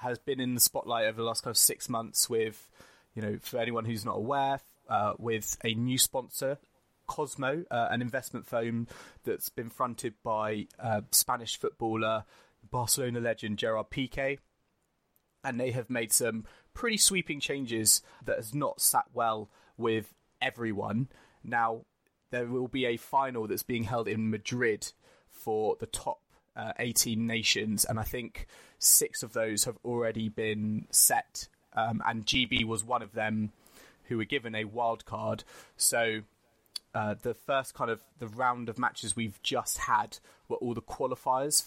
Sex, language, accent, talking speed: male, English, British, 165 wpm